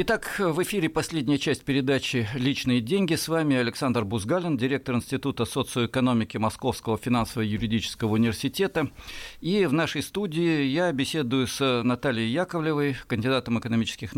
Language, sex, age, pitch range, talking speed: Russian, male, 50-69, 115-150 Hz, 125 wpm